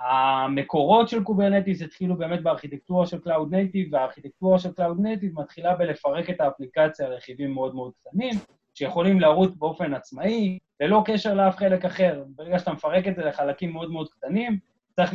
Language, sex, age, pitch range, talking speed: Hebrew, male, 20-39, 145-195 Hz, 160 wpm